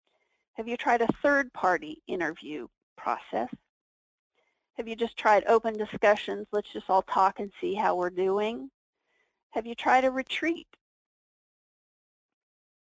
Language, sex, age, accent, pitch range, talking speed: English, female, 50-69, American, 200-270 Hz, 130 wpm